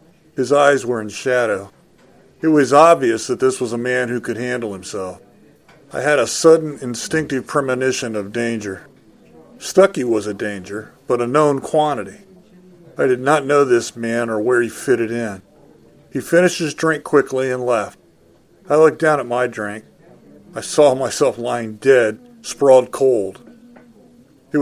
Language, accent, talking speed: English, American, 160 wpm